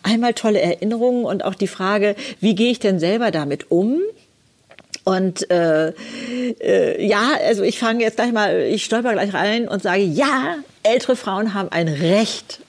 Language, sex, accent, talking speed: German, female, German, 170 wpm